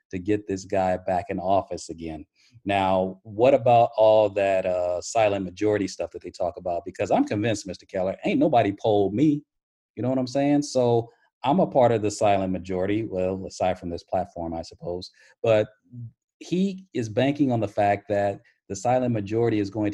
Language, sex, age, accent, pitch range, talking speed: English, male, 40-59, American, 105-140 Hz, 190 wpm